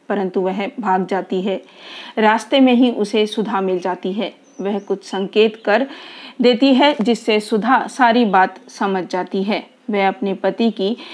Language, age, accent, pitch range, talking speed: Hindi, 40-59, native, 195-240 Hz, 160 wpm